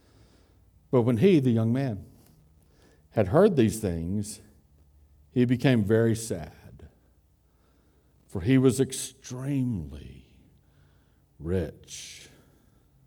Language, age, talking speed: English, 60-79, 85 wpm